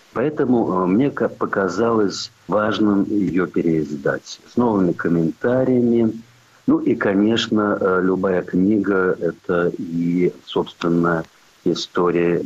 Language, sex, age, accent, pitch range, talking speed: Russian, male, 50-69, native, 85-115 Hz, 85 wpm